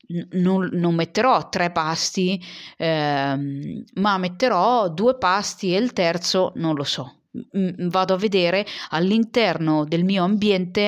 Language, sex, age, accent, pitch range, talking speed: Italian, female, 30-49, native, 155-195 Hz, 125 wpm